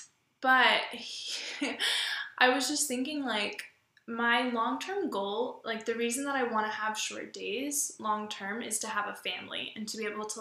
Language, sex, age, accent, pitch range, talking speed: English, female, 10-29, American, 215-255 Hz, 175 wpm